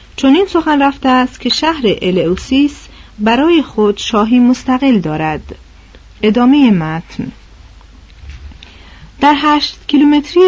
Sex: female